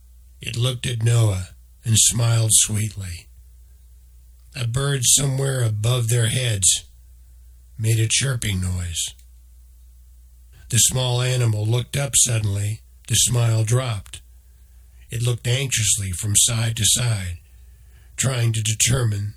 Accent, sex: American, male